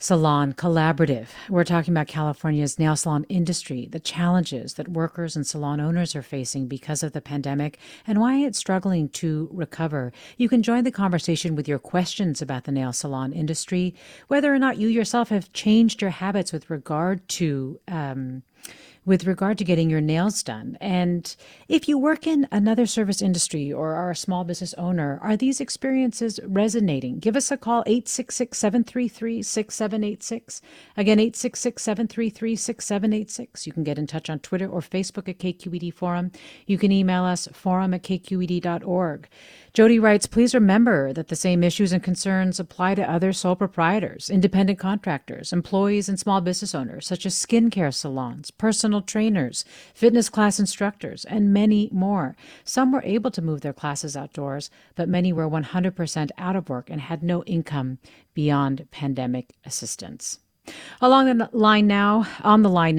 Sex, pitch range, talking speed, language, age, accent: female, 160-215 Hz, 160 wpm, English, 40-59, American